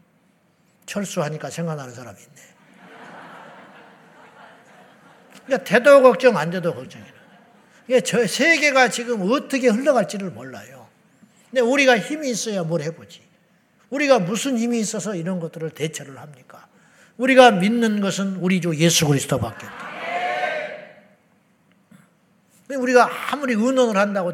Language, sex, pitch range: Korean, male, 175-245 Hz